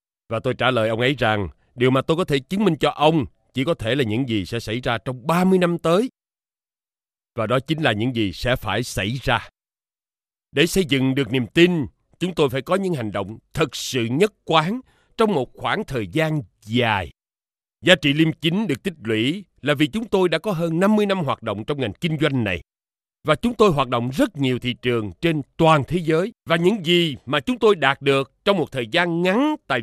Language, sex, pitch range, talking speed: Vietnamese, male, 120-175 Hz, 225 wpm